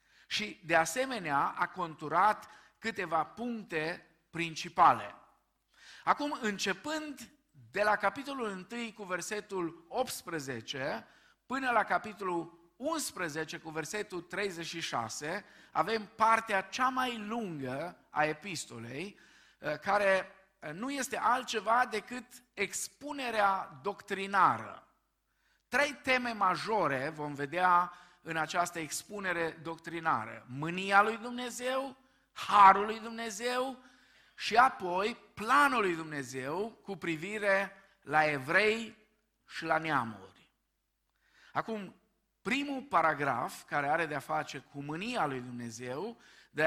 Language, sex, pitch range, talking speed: Romanian, male, 160-225 Hz, 100 wpm